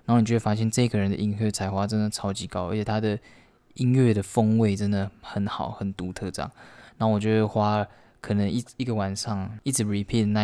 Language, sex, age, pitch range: Chinese, male, 20-39, 100-115 Hz